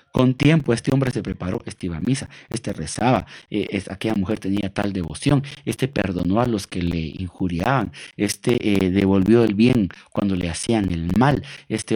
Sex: male